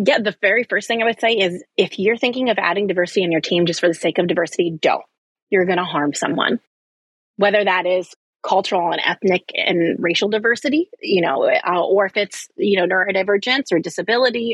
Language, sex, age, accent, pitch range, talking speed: English, female, 30-49, American, 175-225 Hz, 200 wpm